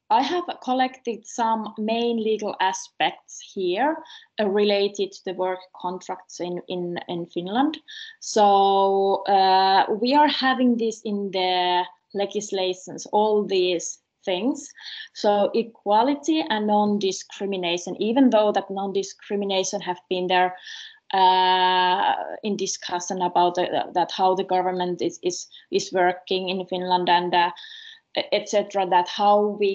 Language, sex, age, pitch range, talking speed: Finnish, female, 20-39, 185-220 Hz, 125 wpm